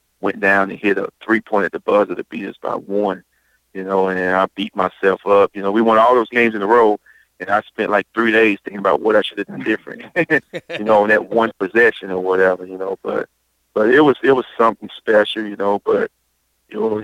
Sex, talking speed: male, 245 wpm